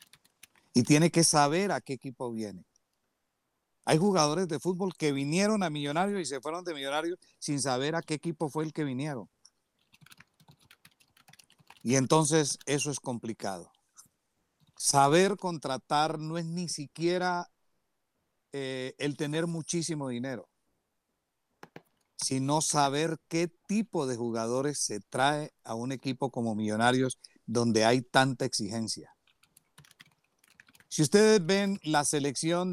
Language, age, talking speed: Spanish, 50-69, 125 wpm